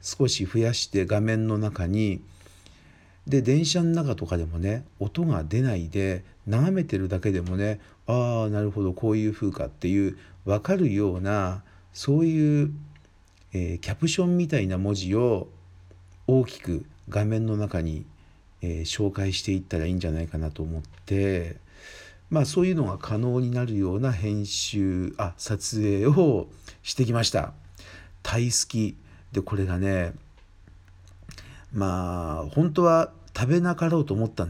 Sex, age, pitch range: male, 50-69, 90-120 Hz